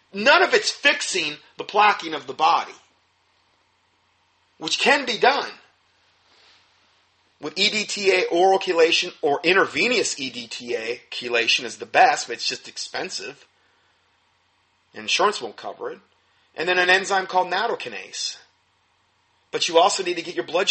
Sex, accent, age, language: male, American, 30-49, English